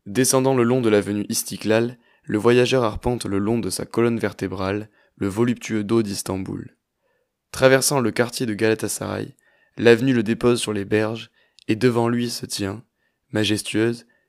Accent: French